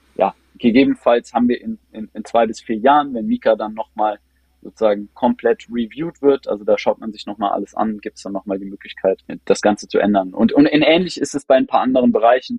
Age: 20-39